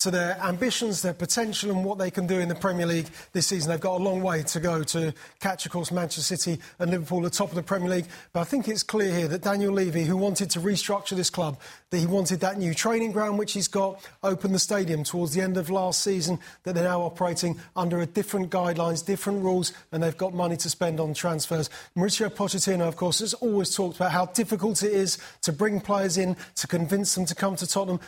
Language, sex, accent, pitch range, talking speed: English, male, British, 165-190 Hz, 240 wpm